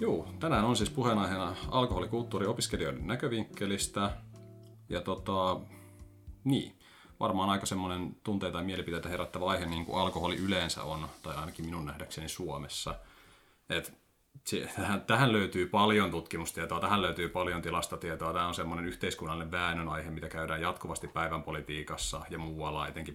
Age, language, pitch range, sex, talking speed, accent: 30-49, Finnish, 80-95 Hz, male, 135 wpm, native